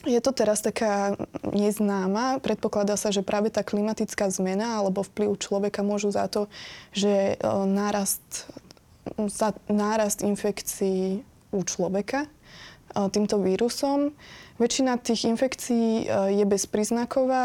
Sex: female